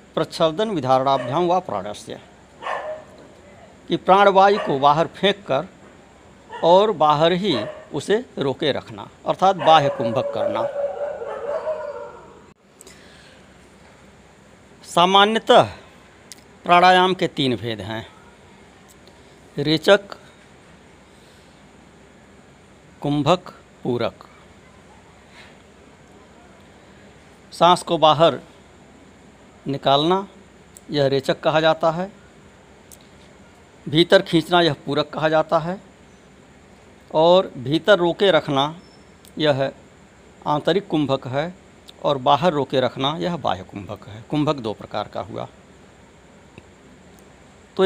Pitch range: 140-190 Hz